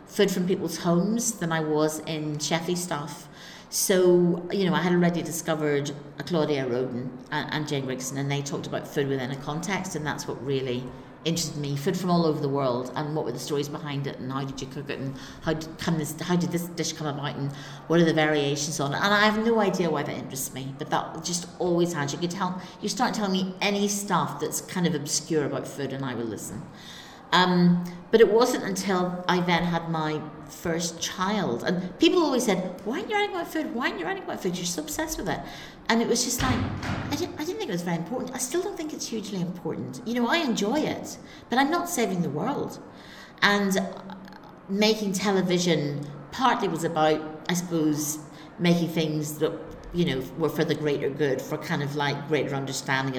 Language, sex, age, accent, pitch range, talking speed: English, female, 50-69, British, 145-190 Hz, 220 wpm